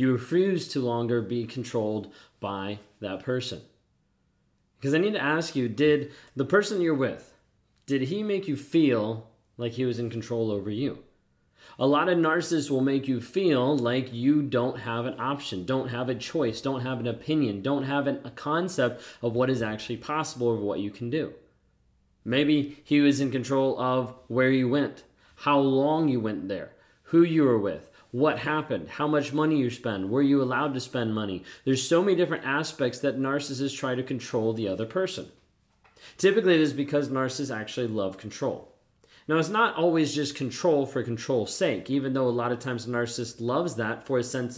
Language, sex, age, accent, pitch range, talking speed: English, male, 30-49, American, 120-145 Hz, 190 wpm